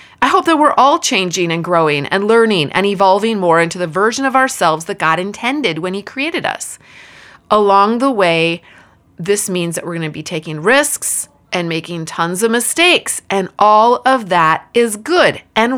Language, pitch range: English, 175-245 Hz